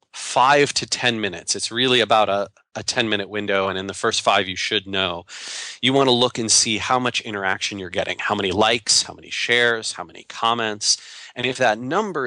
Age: 30-49